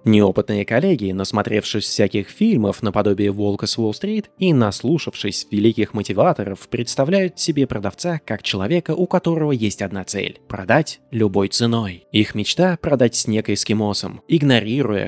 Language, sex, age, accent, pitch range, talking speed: Russian, male, 20-39, native, 105-150 Hz, 145 wpm